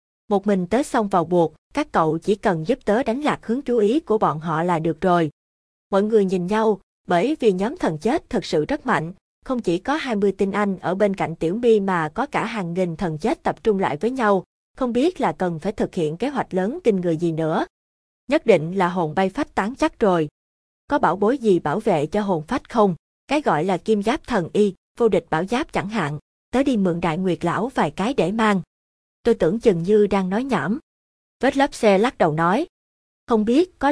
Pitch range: 170-225 Hz